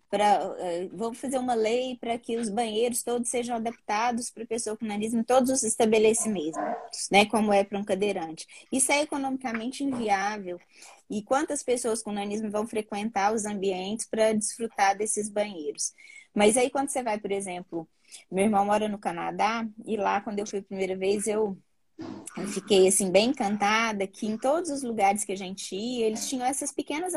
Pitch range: 200-250 Hz